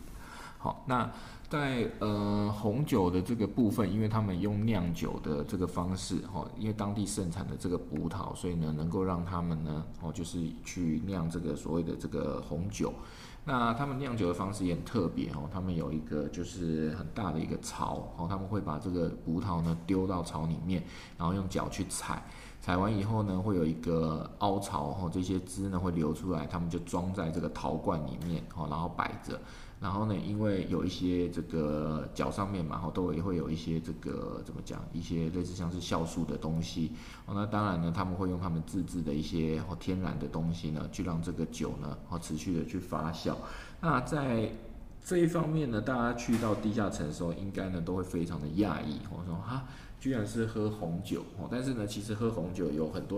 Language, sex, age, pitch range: Chinese, male, 20-39, 80-100 Hz